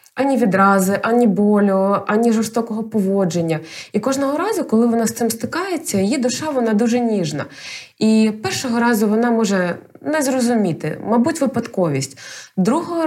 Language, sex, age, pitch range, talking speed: Ukrainian, female, 20-39, 195-245 Hz, 140 wpm